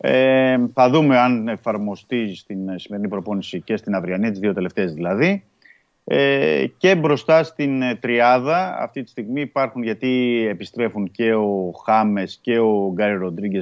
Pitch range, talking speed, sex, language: 100-135 Hz, 145 wpm, male, Greek